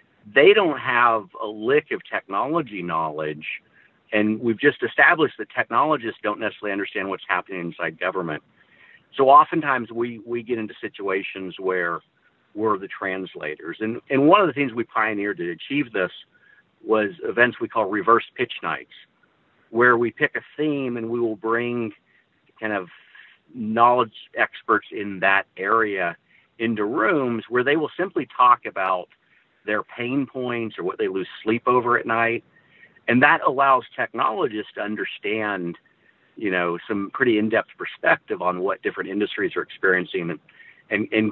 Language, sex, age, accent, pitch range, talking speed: English, male, 50-69, American, 95-125 Hz, 155 wpm